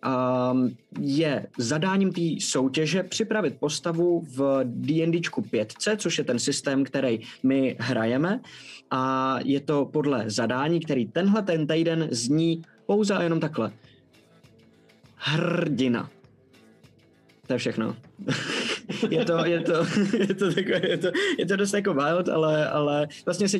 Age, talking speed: 20-39, 130 wpm